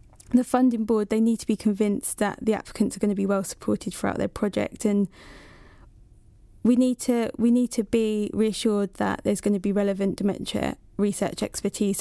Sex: female